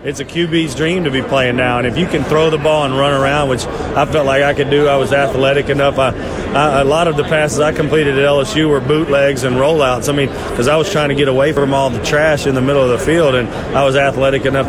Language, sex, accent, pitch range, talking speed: English, male, American, 125-145 Hz, 280 wpm